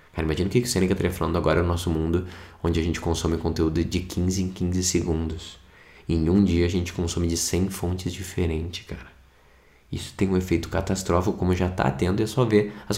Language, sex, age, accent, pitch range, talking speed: Portuguese, male, 20-39, Brazilian, 85-100 Hz, 220 wpm